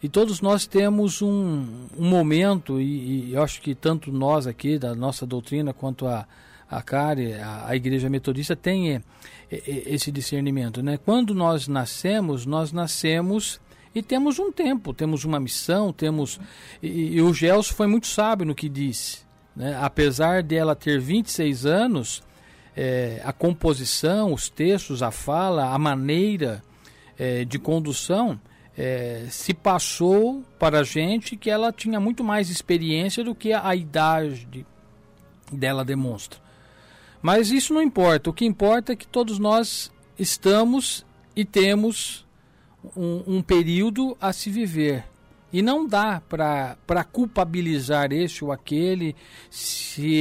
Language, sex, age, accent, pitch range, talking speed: Portuguese, male, 50-69, Brazilian, 135-195 Hz, 140 wpm